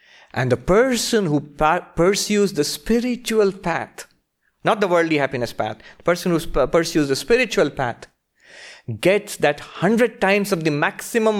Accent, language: Indian, English